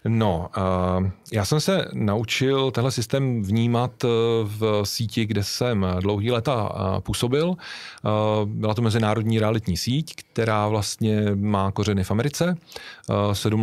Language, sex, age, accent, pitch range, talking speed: Czech, male, 40-59, native, 100-115 Hz, 120 wpm